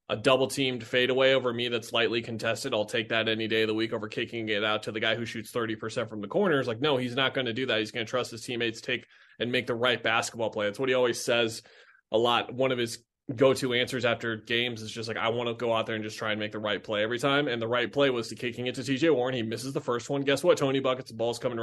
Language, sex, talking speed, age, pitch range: English, male, 300 wpm, 20-39, 115-135 Hz